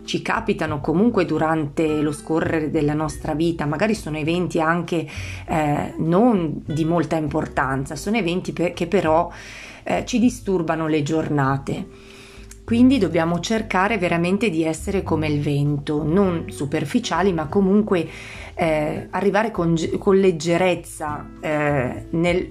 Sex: female